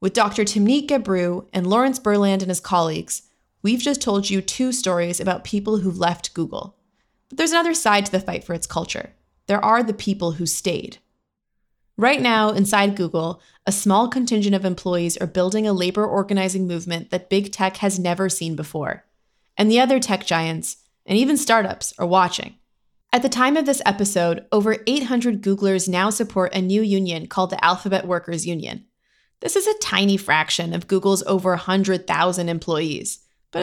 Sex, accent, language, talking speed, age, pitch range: female, American, English, 180 wpm, 20-39, 175-220 Hz